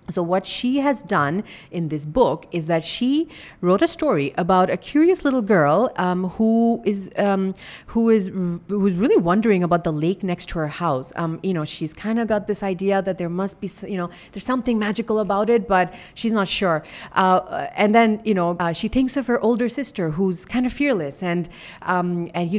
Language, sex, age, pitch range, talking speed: English, female, 30-49, 165-215 Hz, 205 wpm